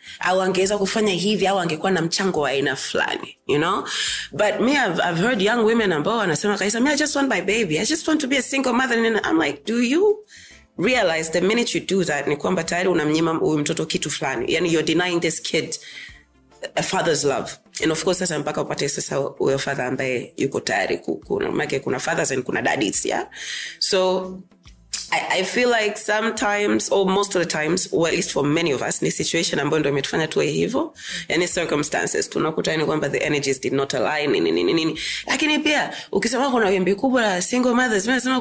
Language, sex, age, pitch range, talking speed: Swahili, female, 30-49, 165-250 Hz, 170 wpm